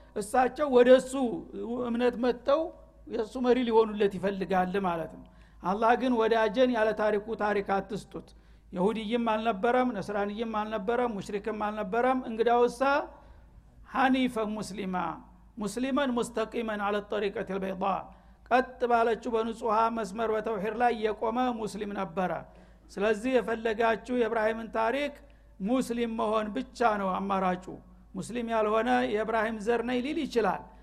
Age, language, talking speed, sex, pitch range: 60-79, Amharic, 100 wpm, male, 210-245 Hz